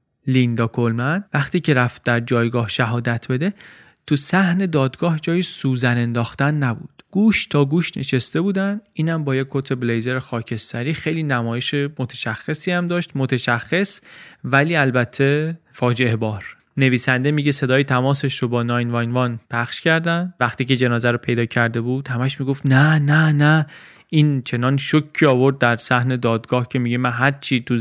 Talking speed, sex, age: 155 wpm, male, 30-49